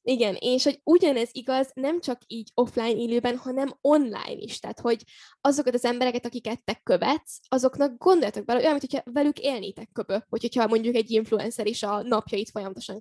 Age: 10-29